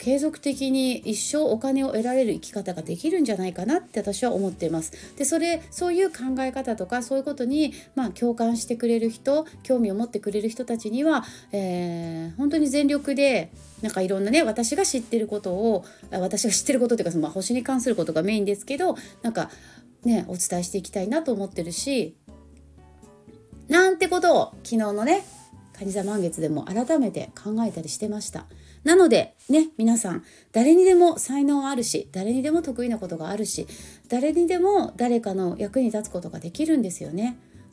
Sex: female